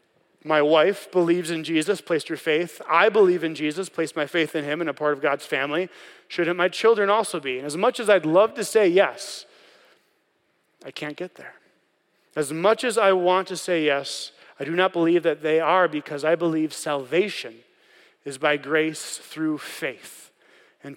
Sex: male